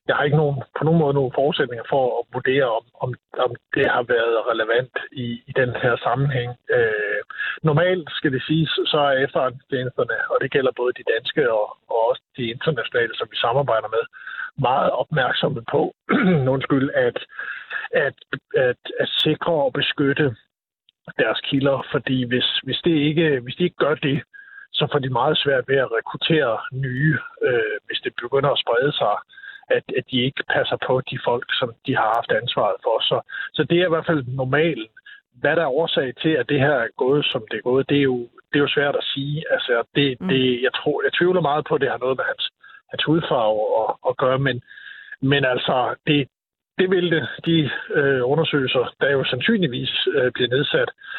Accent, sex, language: native, male, Danish